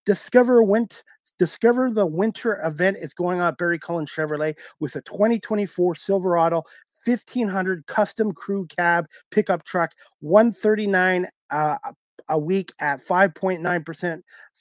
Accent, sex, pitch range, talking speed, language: American, male, 150-190 Hz, 120 wpm, English